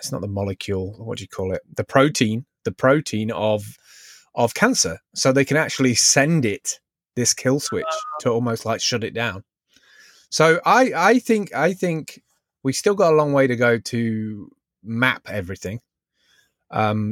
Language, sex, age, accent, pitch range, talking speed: English, male, 20-39, British, 105-135 Hz, 170 wpm